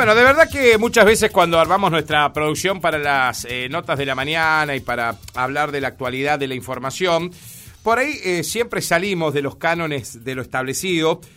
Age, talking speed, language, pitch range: 40-59, 195 wpm, Spanish, 140-200 Hz